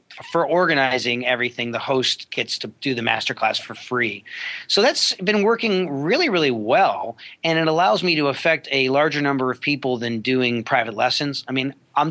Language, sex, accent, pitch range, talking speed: English, male, American, 120-140 Hz, 190 wpm